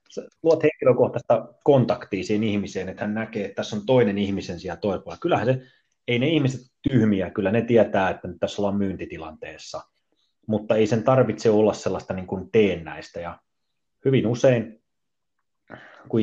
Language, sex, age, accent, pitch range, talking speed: Finnish, male, 30-49, native, 95-110 Hz, 155 wpm